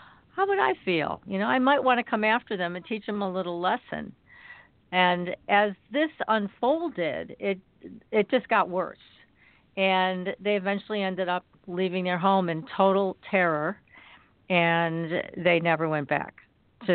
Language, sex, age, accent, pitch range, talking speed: English, female, 50-69, American, 175-215 Hz, 160 wpm